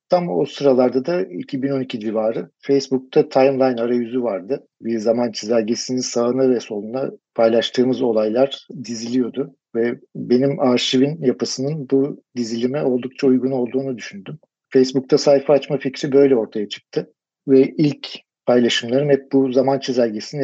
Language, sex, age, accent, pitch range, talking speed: Turkish, male, 50-69, native, 120-135 Hz, 125 wpm